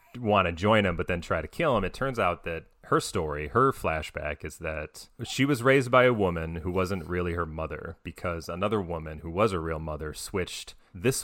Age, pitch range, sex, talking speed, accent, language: 30-49, 80-100 Hz, male, 220 wpm, American, English